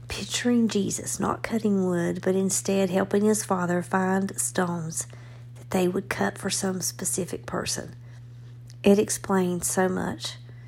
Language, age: English, 50-69